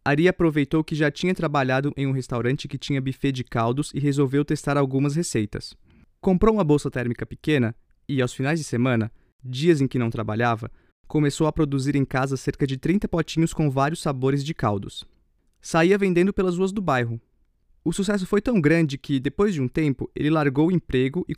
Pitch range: 130-170 Hz